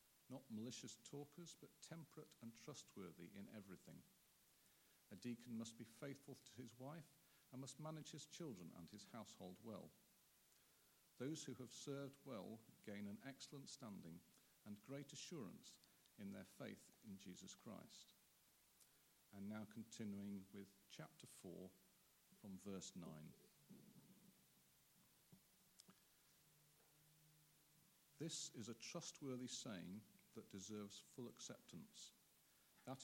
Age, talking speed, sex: 50-69, 115 wpm, male